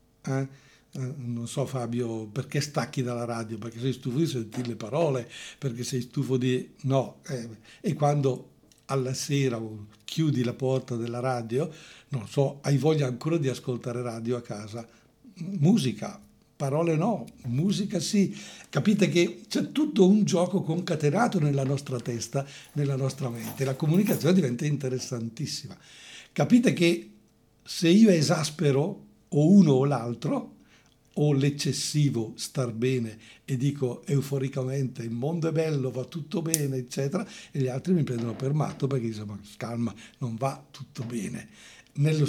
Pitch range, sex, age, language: 125-155 Hz, male, 60-79, Portuguese